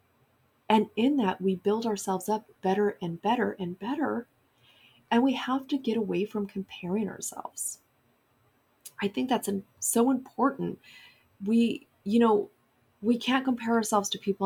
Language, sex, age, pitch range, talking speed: English, female, 30-49, 185-230 Hz, 145 wpm